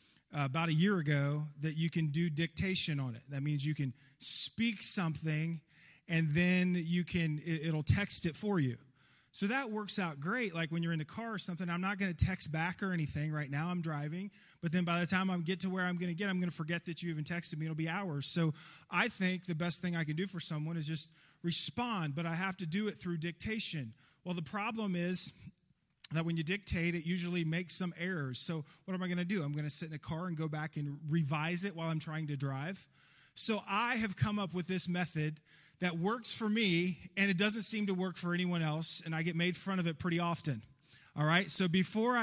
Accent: American